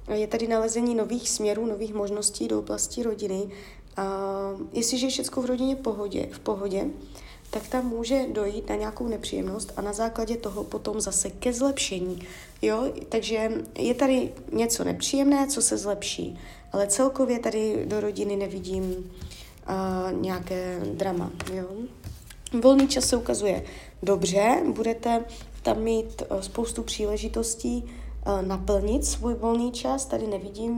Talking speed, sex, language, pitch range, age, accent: 125 wpm, female, Czech, 195-245 Hz, 20-39, native